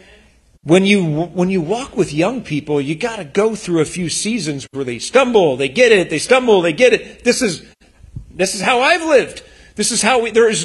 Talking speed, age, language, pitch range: 225 wpm, 40-59, English, 150-205 Hz